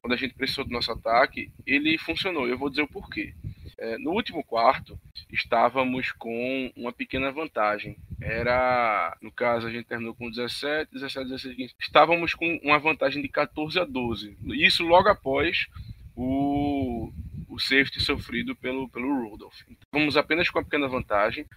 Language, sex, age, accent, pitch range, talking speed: Portuguese, male, 20-39, Brazilian, 125-165 Hz, 160 wpm